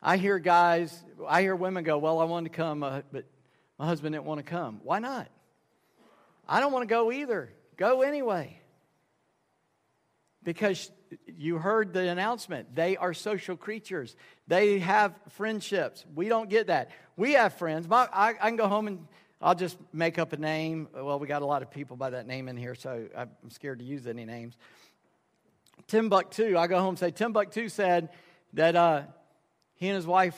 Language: English